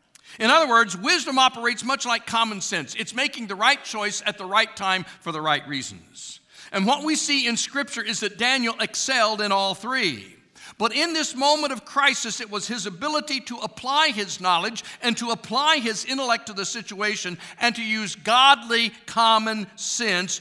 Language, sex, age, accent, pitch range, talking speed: English, male, 50-69, American, 185-260 Hz, 185 wpm